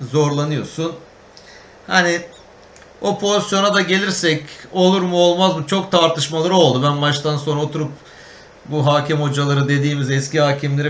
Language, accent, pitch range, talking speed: Turkish, native, 140-175 Hz, 125 wpm